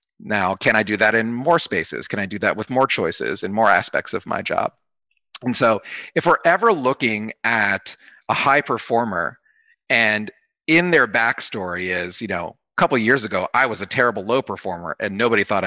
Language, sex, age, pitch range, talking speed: English, male, 40-59, 105-140 Hz, 200 wpm